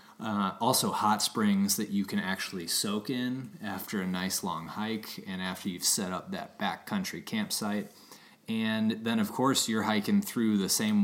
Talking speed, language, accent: 175 wpm, English, American